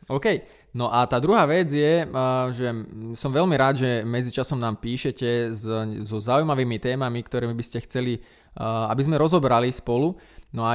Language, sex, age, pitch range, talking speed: Slovak, male, 20-39, 120-145 Hz, 155 wpm